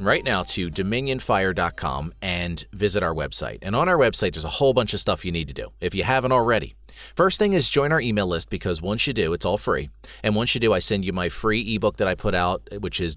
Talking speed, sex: 255 wpm, male